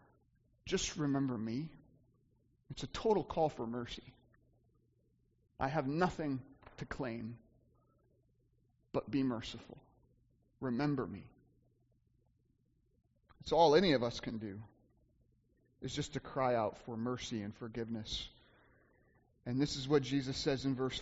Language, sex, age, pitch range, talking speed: English, male, 30-49, 125-200 Hz, 125 wpm